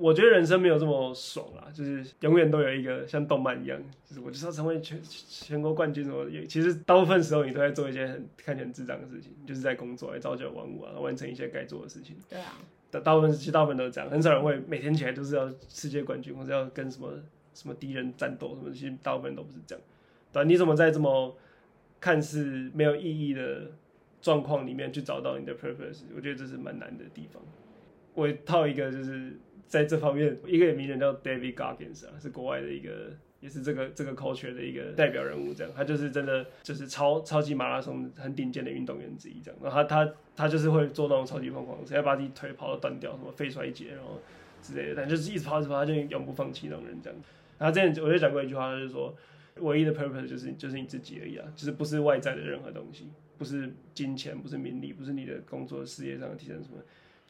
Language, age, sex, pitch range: Chinese, 20-39, male, 130-155 Hz